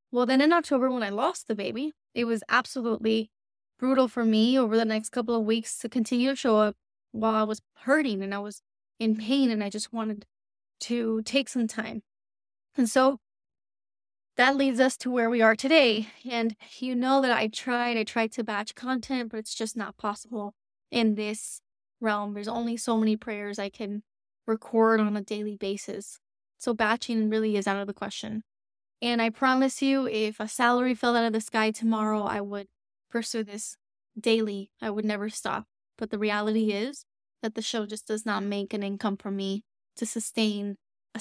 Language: English